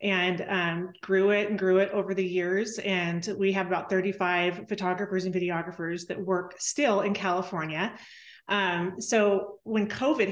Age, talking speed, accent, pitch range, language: 30-49, 155 wpm, American, 185-215 Hz, English